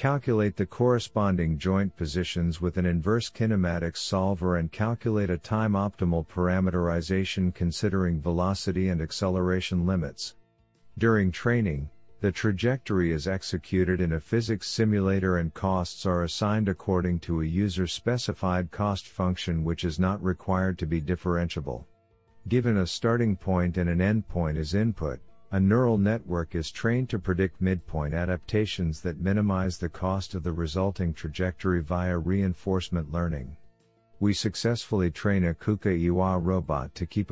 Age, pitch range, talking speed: 50-69, 85-100 Hz, 140 wpm